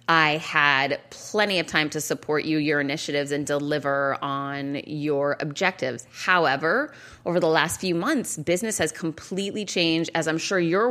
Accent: American